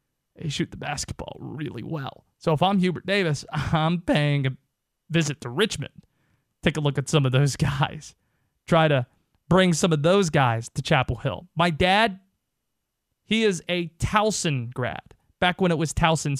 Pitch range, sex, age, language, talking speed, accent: 145-190 Hz, male, 30-49, English, 170 wpm, American